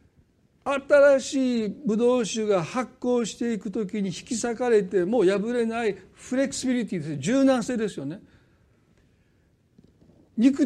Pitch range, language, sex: 180-240 Hz, Japanese, male